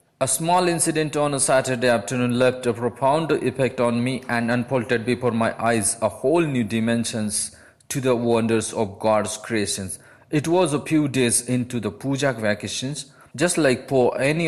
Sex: male